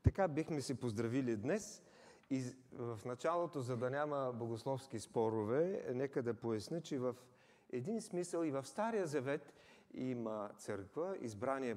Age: 40-59